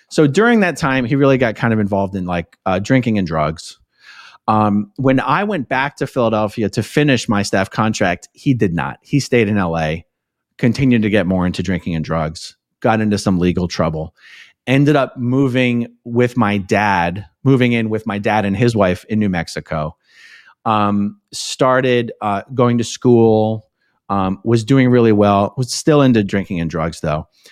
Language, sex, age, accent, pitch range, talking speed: English, male, 30-49, American, 95-130 Hz, 180 wpm